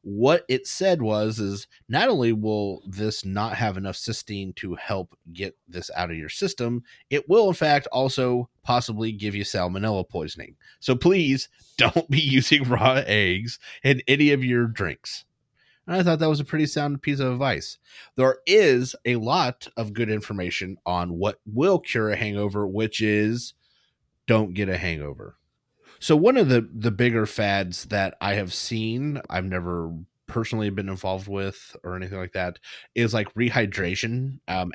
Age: 30-49